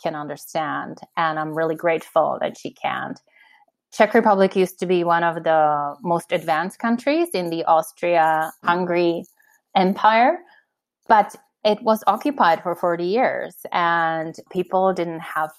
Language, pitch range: English, 160-195 Hz